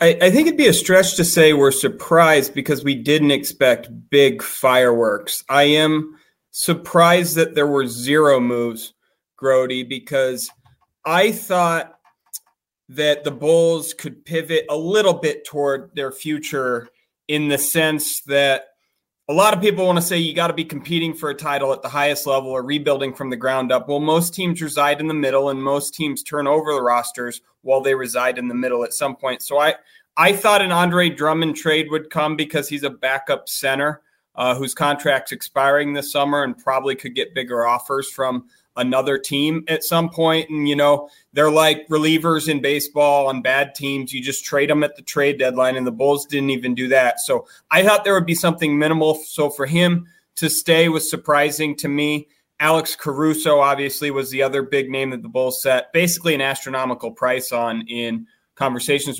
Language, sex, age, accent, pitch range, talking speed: English, male, 30-49, American, 135-160 Hz, 190 wpm